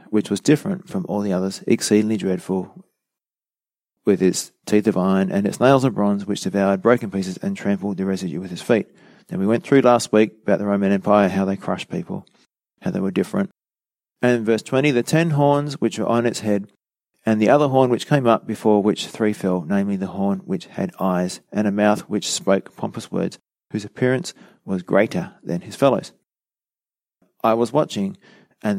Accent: Australian